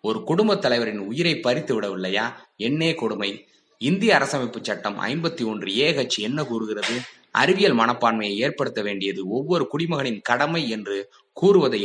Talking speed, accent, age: 120 wpm, native, 20-39